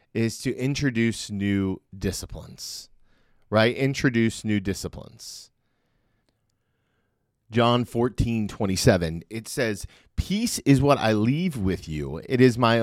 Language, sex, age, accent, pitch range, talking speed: English, male, 30-49, American, 100-130 Hz, 110 wpm